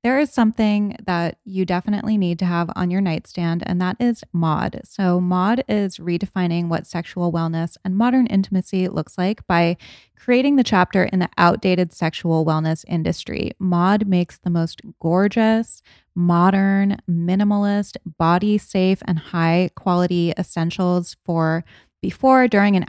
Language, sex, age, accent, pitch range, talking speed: English, female, 20-39, American, 170-205 Hz, 140 wpm